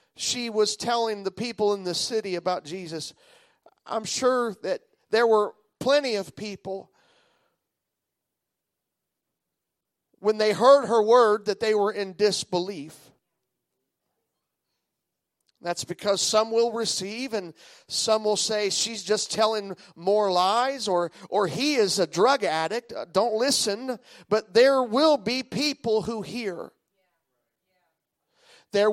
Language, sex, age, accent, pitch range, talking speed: English, male, 40-59, American, 190-245 Hz, 120 wpm